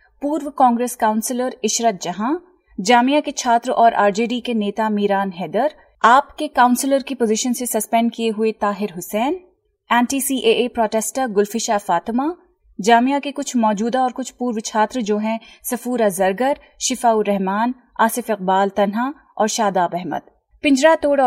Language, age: Hindi, 30-49